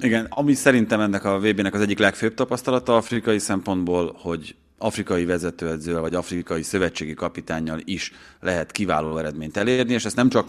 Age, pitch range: 30-49, 80-95 Hz